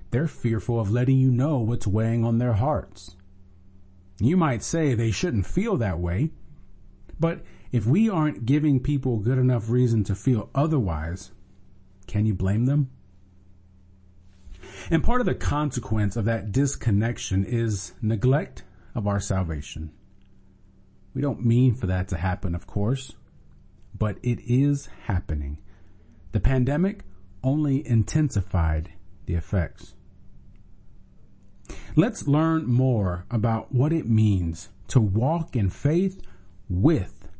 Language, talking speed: English, 125 wpm